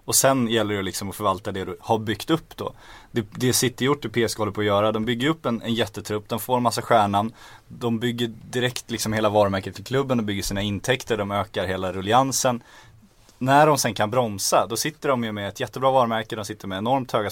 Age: 20-39